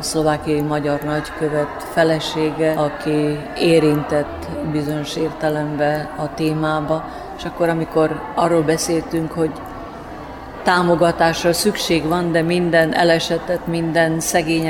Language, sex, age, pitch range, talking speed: Hungarian, female, 30-49, 150-165 Hz, 100 wpm